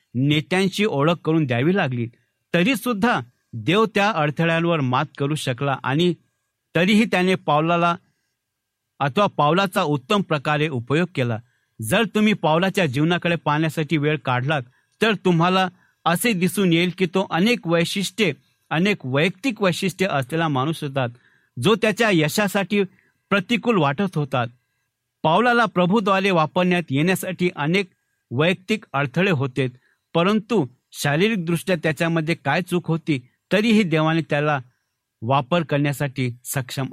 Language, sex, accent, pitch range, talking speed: Marathi, male, native, 145-195 Hz, 115 wpm